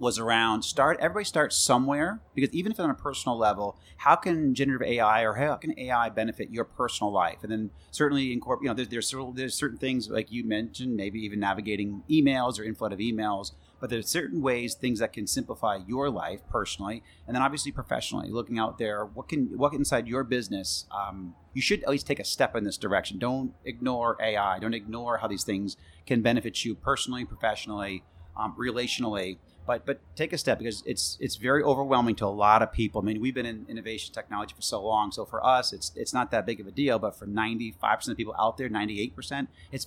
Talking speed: 220 wpm